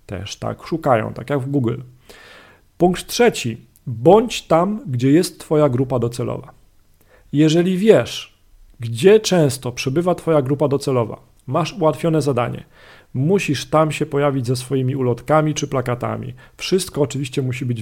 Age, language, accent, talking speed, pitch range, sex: 40-59, Polish, native, 135 wpm, 125-155 Hz, male